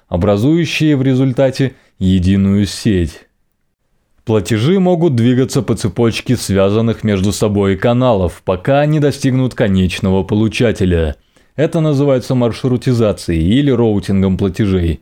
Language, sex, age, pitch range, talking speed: Russian, male, 20-39, 95-135 Hz, 100 wpm